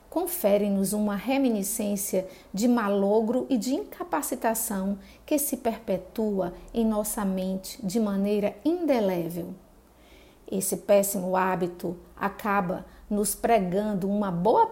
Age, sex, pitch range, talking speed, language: 40-59, female, 195-255 Hz, 100 wpm, Portuguese